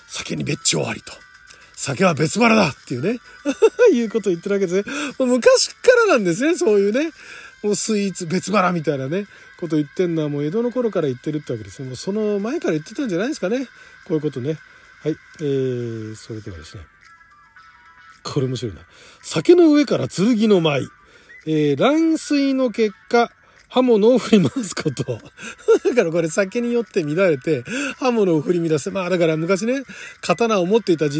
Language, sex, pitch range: Japanese, male, 155-250 Hz